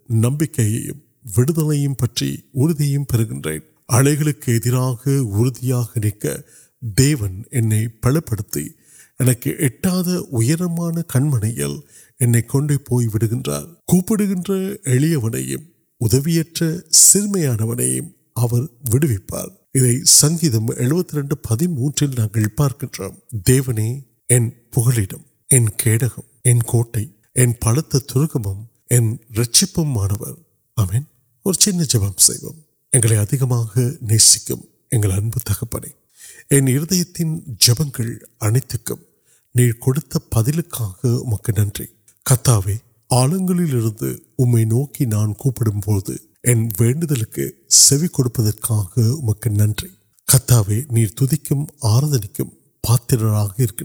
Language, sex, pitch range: Urdu, male, 110-145 Hz